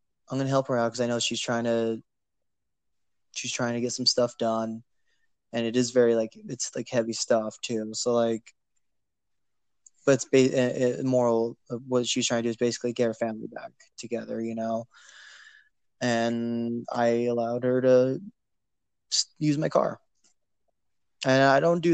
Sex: male